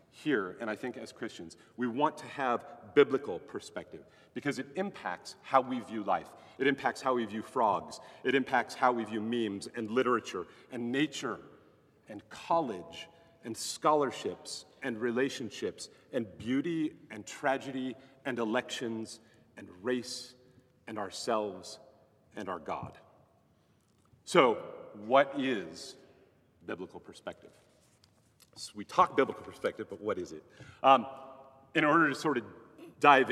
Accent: American